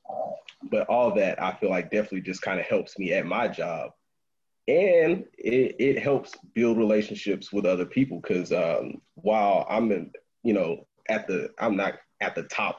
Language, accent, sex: English, American, male